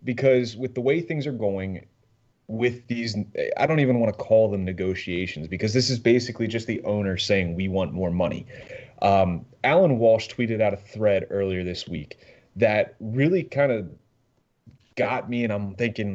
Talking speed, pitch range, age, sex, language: 180 wpm, 100-125 Hz, 30-49, male, English